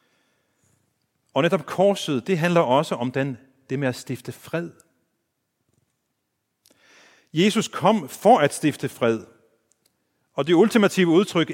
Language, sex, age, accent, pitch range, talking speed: Danish, male, 40-59, native, 125-170 Hz, 115 wpm